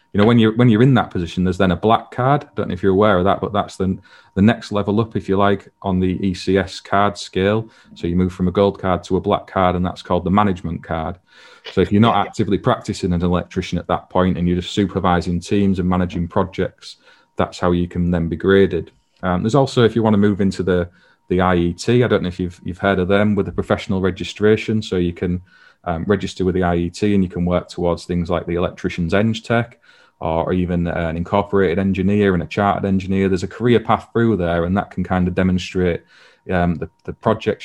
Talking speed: 235 wpm